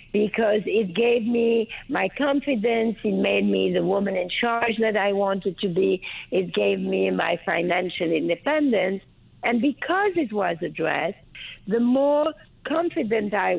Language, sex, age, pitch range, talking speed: English, female, 50-69, 200-275 Hz, 150 wpm